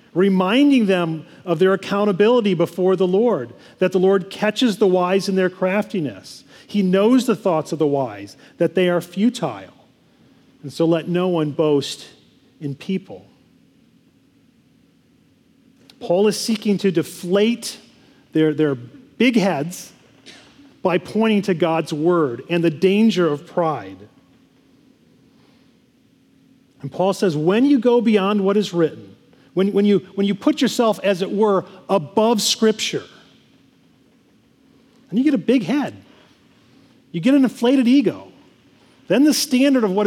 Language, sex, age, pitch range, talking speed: English, male, 40-59, 170-225 Hz, 140 wpm